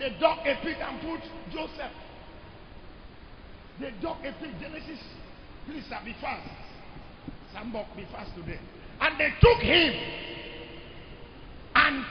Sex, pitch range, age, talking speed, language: male, 210-320 Hz, 50-69, 125 wpm, English